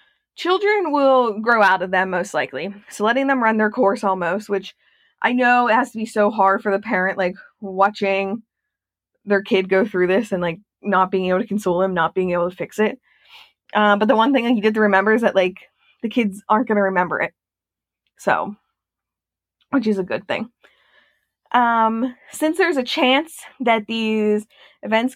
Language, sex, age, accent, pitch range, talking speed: English, female, 20-39, American, 195-250 Hz, 195 wpm